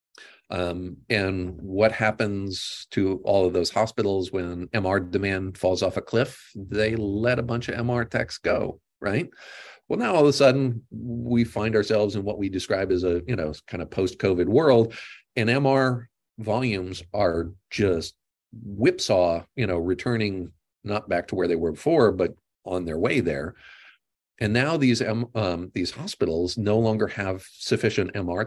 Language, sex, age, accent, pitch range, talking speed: English, male, 40-59, American, 90-115 Hz, 165 wpm